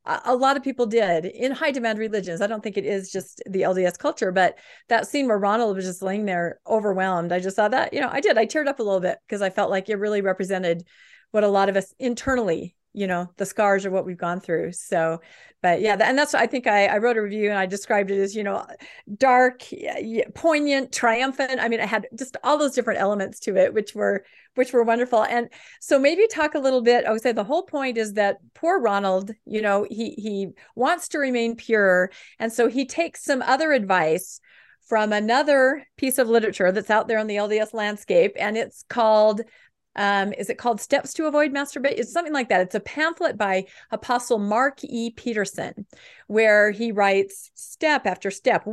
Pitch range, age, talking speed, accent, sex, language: 195-260 Hz, 40-59, 215 wpm, American, female, English